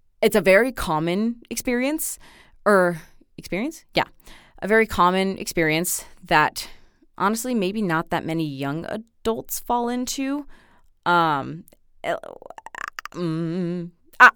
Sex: female